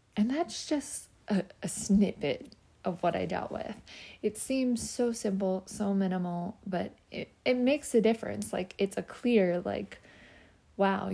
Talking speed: 155 wpm